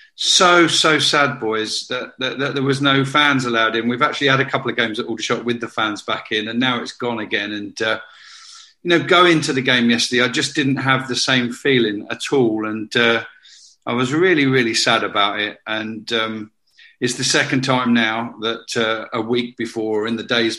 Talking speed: 215 wpm